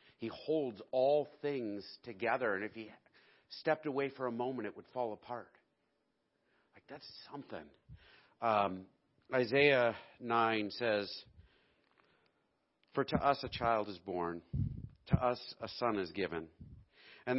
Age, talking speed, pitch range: 50-69, 130 wpm, 95-115 Hz